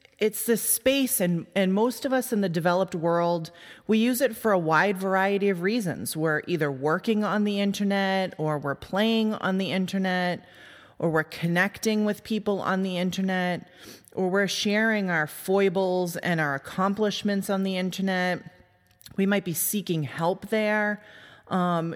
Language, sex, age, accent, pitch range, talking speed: English, female, 30-49, American, 165-205 Hz, 160 wpm